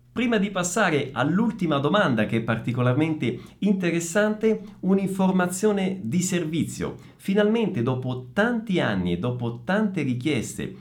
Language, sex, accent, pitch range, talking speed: Italian, male, native, 110-160 Hz, 110 wpm